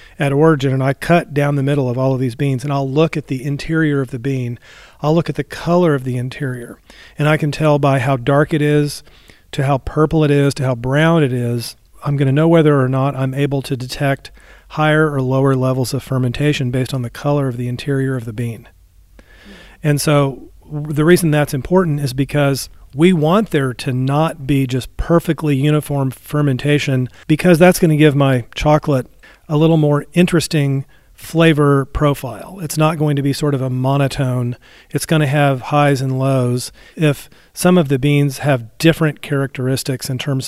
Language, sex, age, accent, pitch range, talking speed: English, male, 40-59, American, 130-155 Hz, 195 wpm